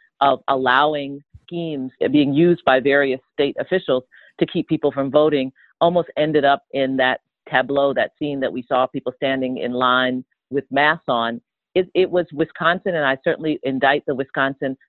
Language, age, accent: English, 40-59, American